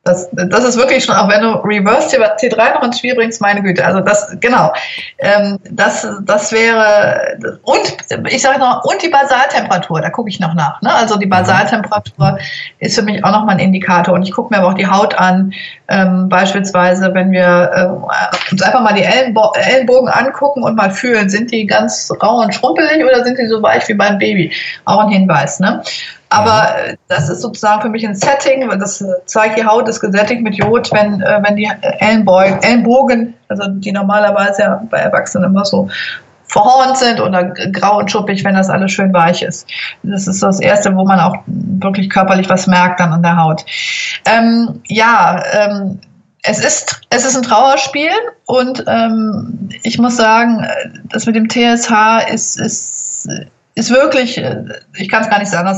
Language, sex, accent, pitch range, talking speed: German, female, German, 190-245 Hz, 185 wpm